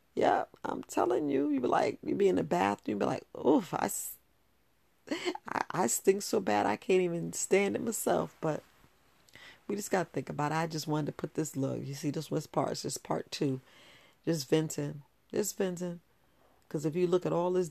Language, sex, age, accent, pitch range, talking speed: English, female, 40-59, American, 155-205 Hz, 210 wpm